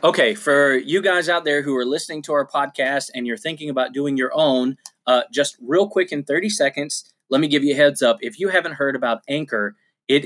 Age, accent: 20-39, American